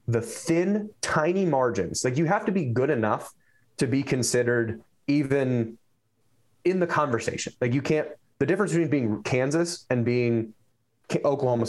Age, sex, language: 20-39, male, English